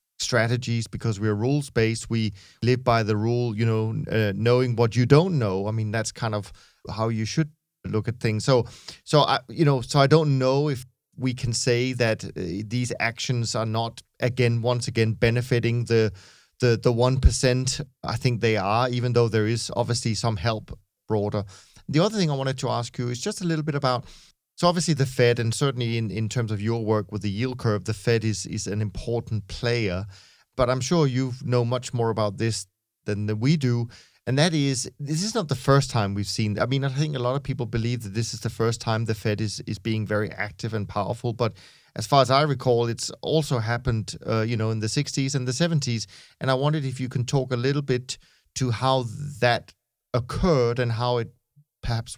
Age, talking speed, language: 40-59, 215 wpm, English